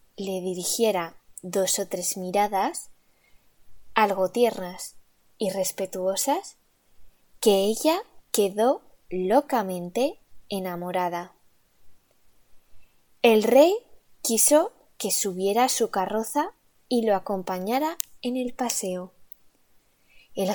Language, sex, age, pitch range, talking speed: Italian, female, 20-39, 190-260 Hz, 90 wpm